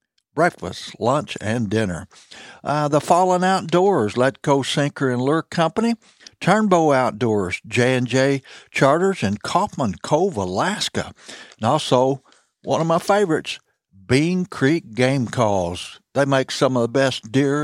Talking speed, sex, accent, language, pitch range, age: 130 wpm, male, American, English, 115-160 Hz, 60-79